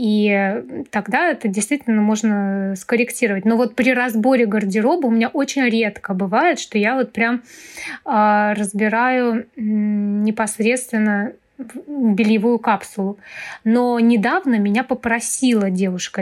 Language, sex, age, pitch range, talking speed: Russian, female, 20-39, 210-250 Hz, 110 wpm